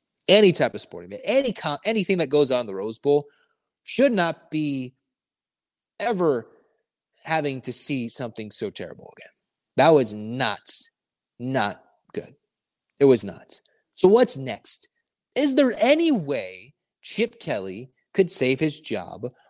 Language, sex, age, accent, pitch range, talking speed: English, male, 30-49, American, 125-200 Hz, 145 wpm